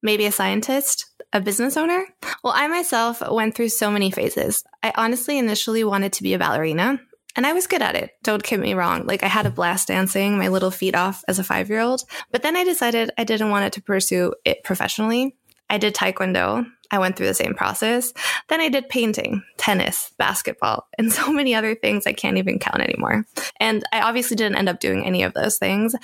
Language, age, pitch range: English, 20-39, 200-255 Hz